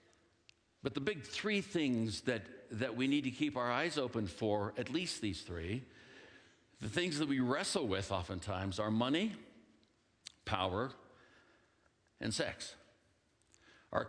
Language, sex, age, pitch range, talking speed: English, male, 60-79, 100-130 Hz, 135 wpm